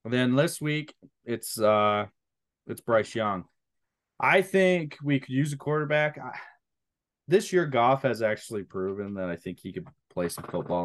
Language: English